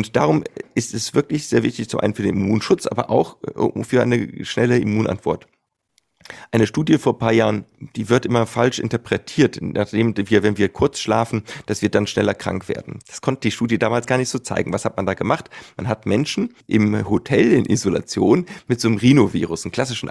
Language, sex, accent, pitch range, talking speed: German, male, German, 105-130 Hz, 205 wpm